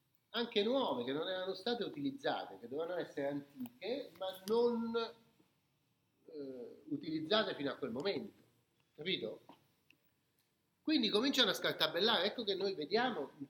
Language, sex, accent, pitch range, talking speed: Italian, male, native, 145-230 Hz, 130 wpm